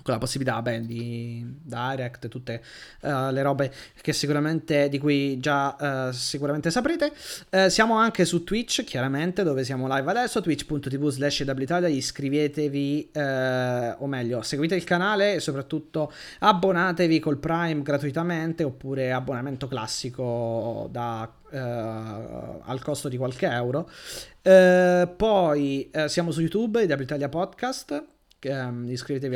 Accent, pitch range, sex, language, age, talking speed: native, 130-170 Hz, male, Italian, 30-49, 130 wpm